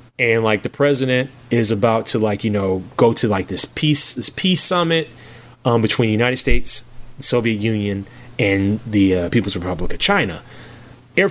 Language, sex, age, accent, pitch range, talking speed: English, male, 30-49, American, 105-135 Hz, 180 wpm